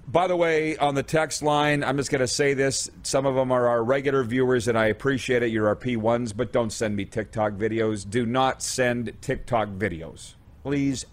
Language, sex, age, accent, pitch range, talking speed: English, male, 40-59, American, 110-155 Hz, 210 wpm